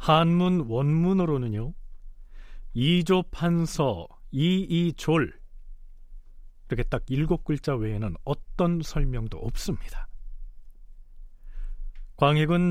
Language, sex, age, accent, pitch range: Korean, male, 40-59, native, 110-160 Hz